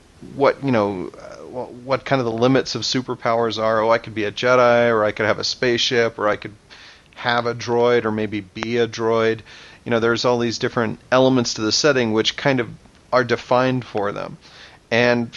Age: 30-49